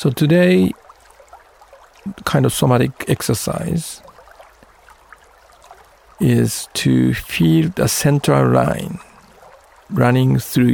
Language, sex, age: Japanese, male, 50-69